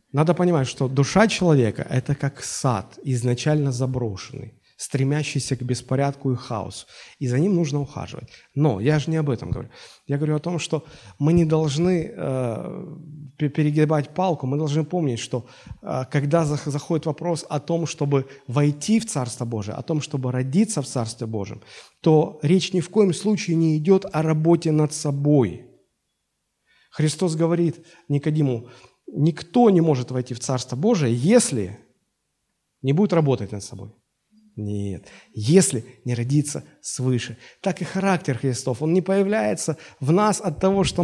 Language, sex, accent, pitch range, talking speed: Russian, male, native, 130-160 Hz, 155 wpm